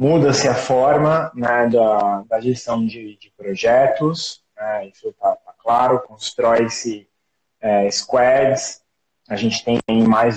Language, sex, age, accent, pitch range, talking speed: Portuguese, male, 20-39, Brazilian, 115-150 Hz, 125 wpm